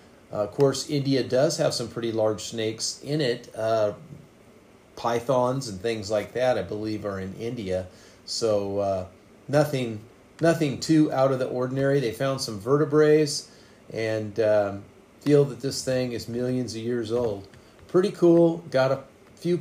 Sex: male